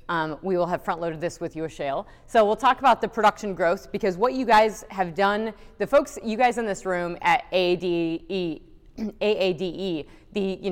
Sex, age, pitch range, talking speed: female, 30-49, 170-210 Hz, 195 wpm